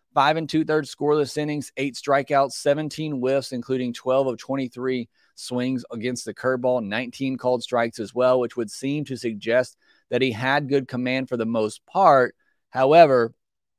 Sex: male